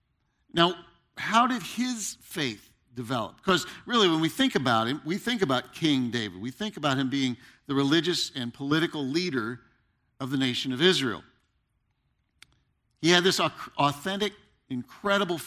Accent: American